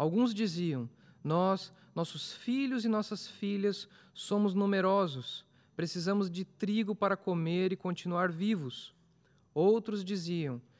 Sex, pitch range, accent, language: male, 180-215 Hz, Brazilian, Portuguese